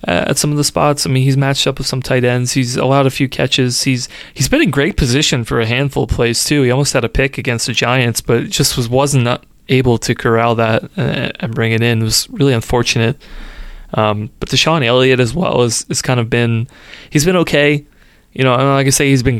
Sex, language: male, English